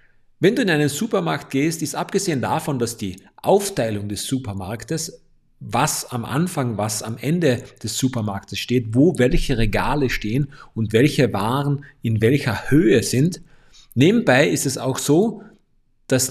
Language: German